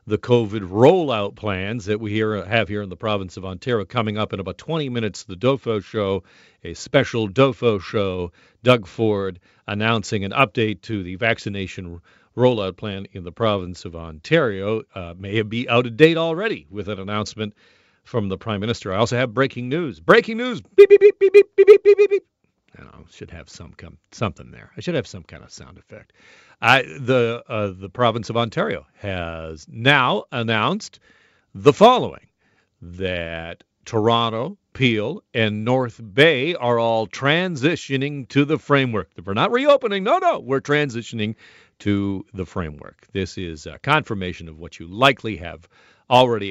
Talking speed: 170 wpm